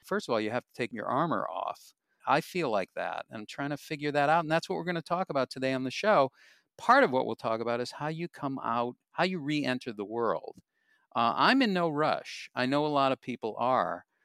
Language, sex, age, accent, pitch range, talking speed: English, male, 50-69, American, 115-155 Hz, 255 wpm